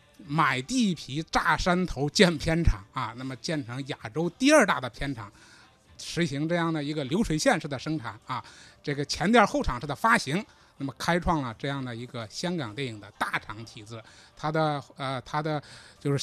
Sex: male